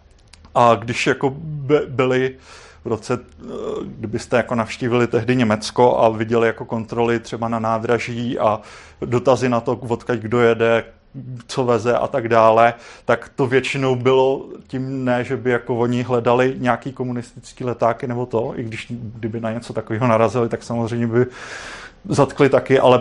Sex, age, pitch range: male, 30-49, 120-135 Hz